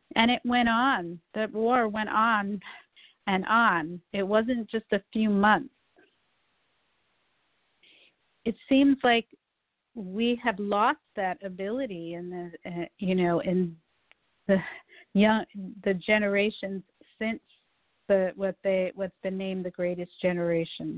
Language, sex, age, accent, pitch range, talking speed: English, female, 40-59, American, 185-220 Hz, 125 wpm